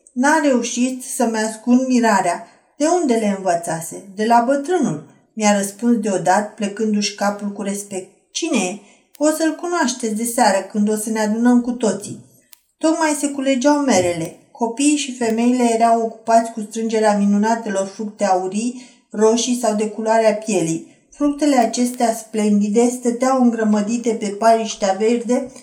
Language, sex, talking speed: Romanian, female, 140 wpm